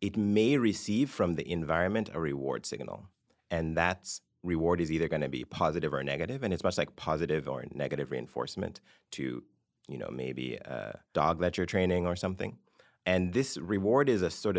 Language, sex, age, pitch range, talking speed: English, male, 30-49, 80-115 Hz, 185 wpm